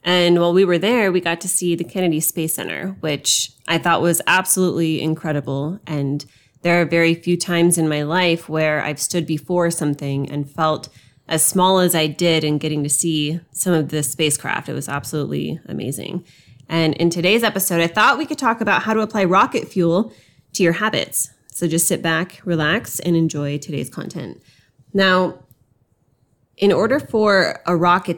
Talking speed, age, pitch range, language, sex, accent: 180 wpm, 20-39, 150-185 Hz, English, female, American